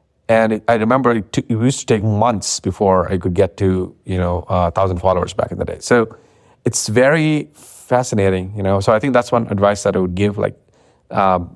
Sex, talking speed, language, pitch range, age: male, 220 wpm, English, 95-115 Hz, 30-49